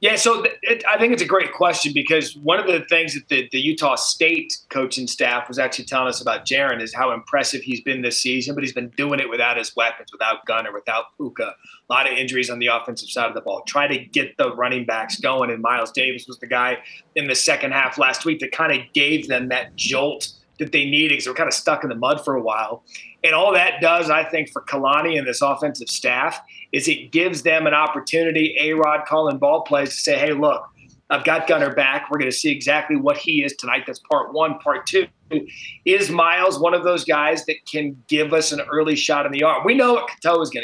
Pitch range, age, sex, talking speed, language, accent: 135-180 Hz, 30-49, male, 240 wpm, English, American